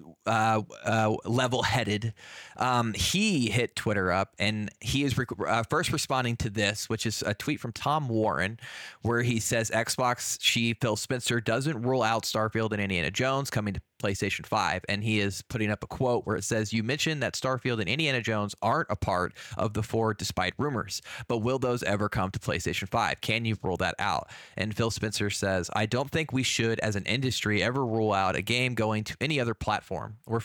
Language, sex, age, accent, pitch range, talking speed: English, male, 20-39, American, 105-120 Hz, 205 wpm